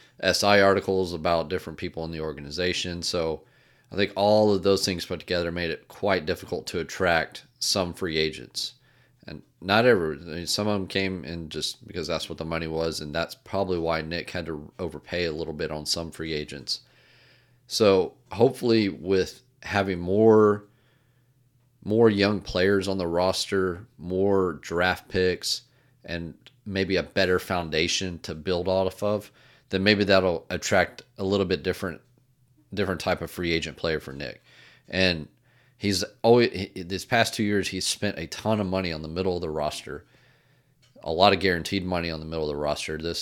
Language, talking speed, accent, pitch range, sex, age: English, 180 wpm, American, 85-105 Hz, male, 30-49